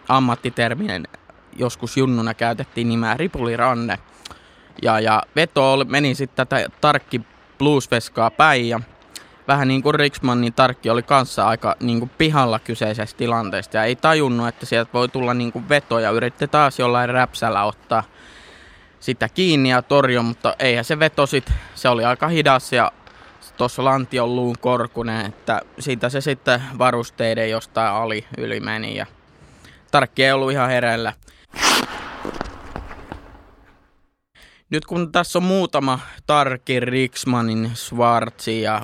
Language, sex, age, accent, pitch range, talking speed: Finnish, male, 20-39, native, 115-135 Hz, 130 wpm